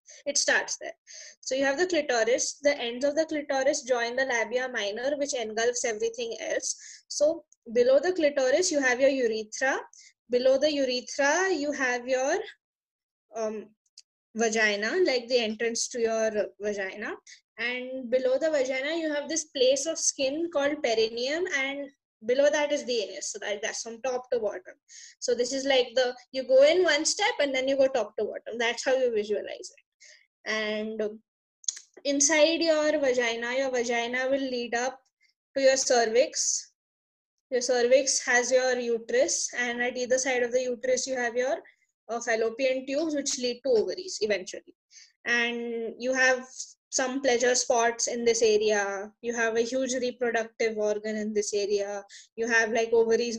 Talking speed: 165 wpm